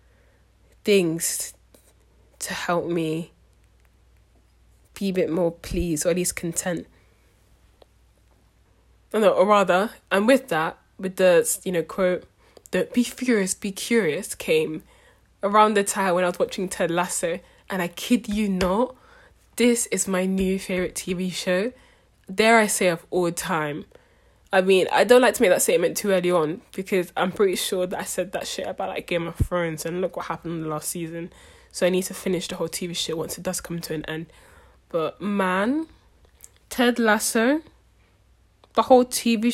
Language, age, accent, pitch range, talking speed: English, 10-29, British, 175-225 Hz, 175 wpm